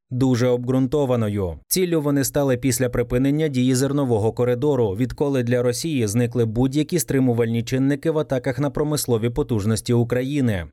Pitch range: 115-145 Hz